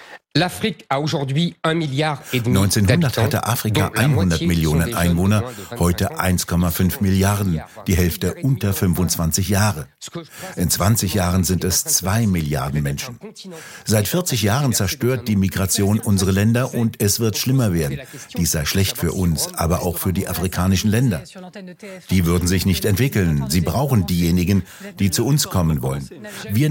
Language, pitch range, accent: German, 90-120 Hz, German